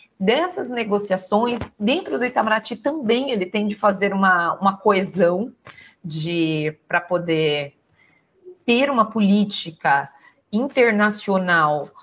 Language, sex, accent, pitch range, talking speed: Portuguese, female, Brazilian, 185-255 Hz, 95 wpm